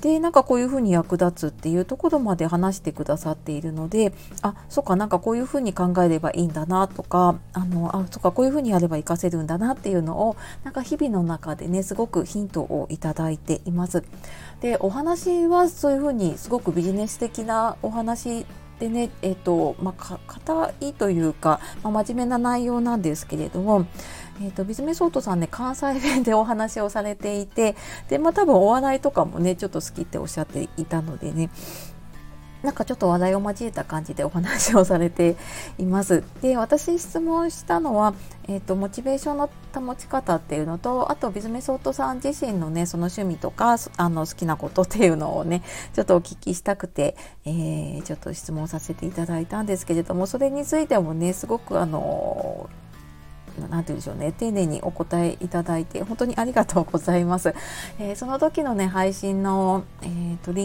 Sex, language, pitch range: female, Japanese, 170-230 Hz